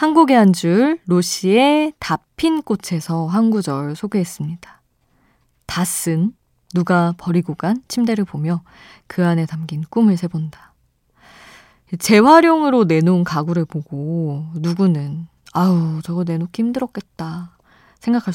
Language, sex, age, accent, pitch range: Korean, female, 20-39, native, 160-210 Hz